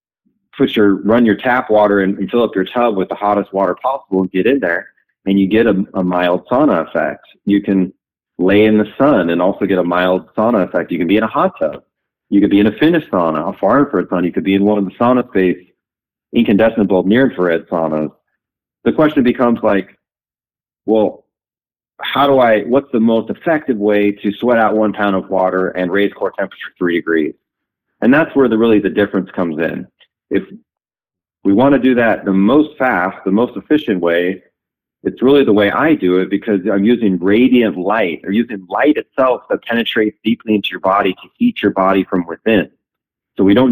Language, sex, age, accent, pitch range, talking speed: English, male, 30-49, American, 95-115 Hz, 210 wpm